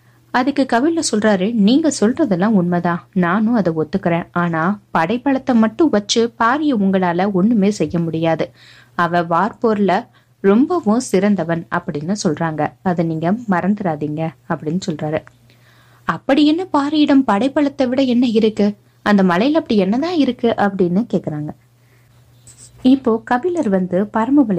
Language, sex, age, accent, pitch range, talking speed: Tamil, female, 20-39, native, 165-240 Hz, 115 wpm